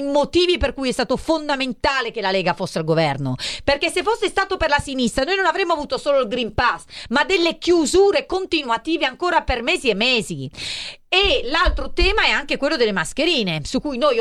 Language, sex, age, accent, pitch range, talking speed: Italian, female, 40-59, native, 210-295 Hz, 200 wpm